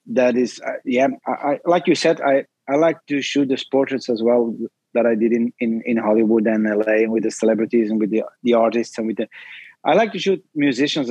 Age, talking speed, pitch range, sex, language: 30-49, 230 wpm, 120-145 Hz, male, English